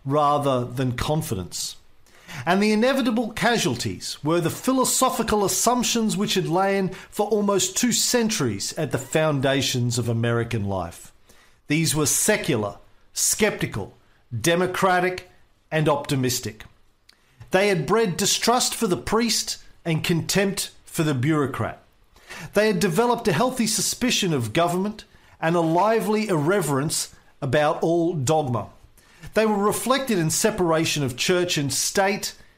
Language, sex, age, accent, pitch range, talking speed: English, male, 50-69, Australian, 135-210 Hz, 125 wpm